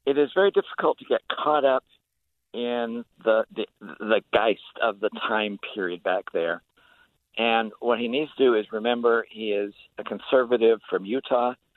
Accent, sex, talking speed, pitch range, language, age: American, male, 170 wpm, 110-125 Hz, English, 60-79